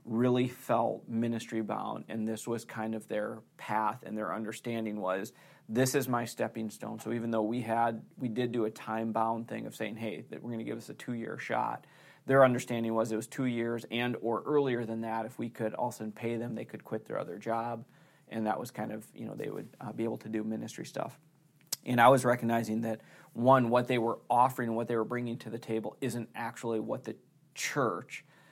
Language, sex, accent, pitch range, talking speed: English, male, American, 110-125 Hz, 225 wpm